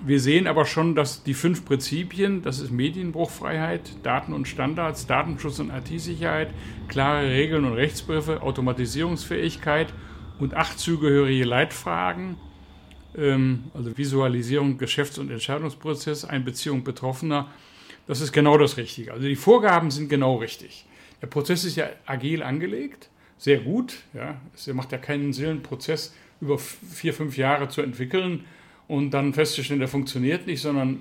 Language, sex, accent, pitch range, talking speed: German, male, German, 130-155 Hz, 140 wpm